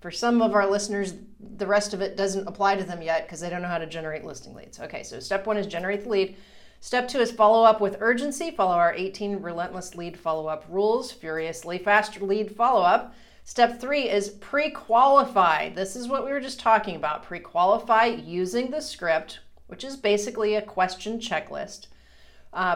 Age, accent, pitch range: 40-59, American, 185-235 Hz